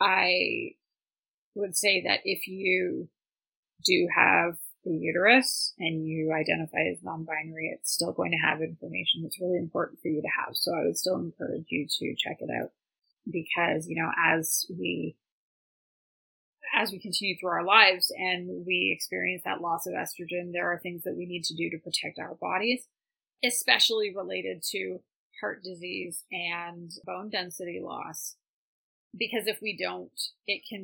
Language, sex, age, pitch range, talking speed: English, female, 20-39, 170-215 Hz, 160 wpm